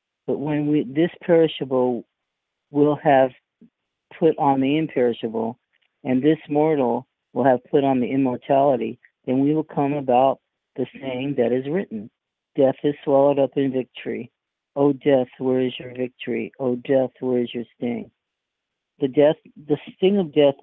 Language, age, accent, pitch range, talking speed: English, 50-69, American, 125-145 Hz, 165 wpm